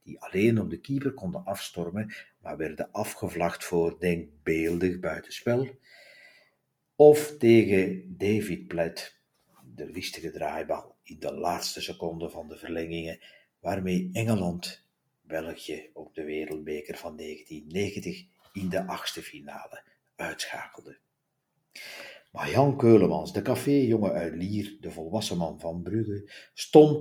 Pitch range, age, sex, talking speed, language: 85-120 Hz, 50-69, male, 120 wpm, Dutch